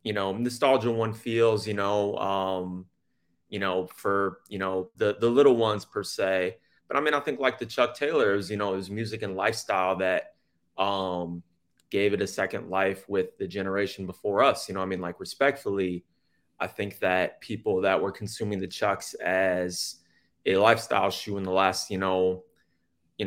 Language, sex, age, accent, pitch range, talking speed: English, male, 30-49, American, 95-115 Hz, 185 wpm